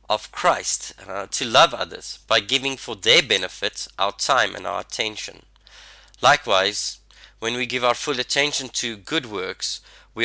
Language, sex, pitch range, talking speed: English, male, 100-130 Hz, 160 wpm